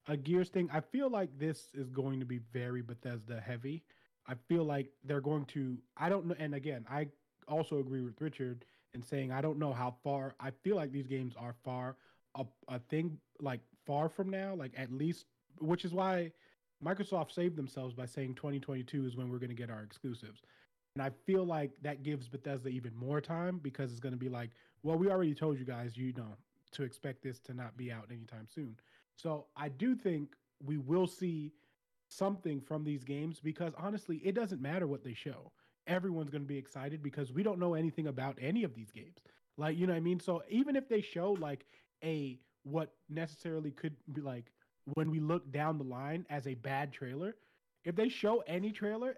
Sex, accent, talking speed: male, American, 210 wpm